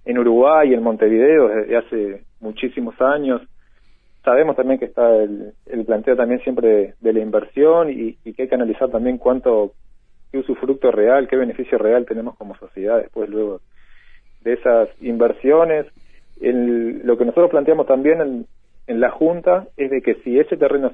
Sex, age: male, 40-59